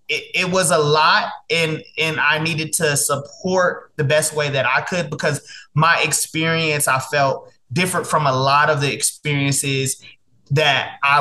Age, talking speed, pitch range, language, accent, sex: 20-39, 165 wpm, 140-170 Hz, English, American, male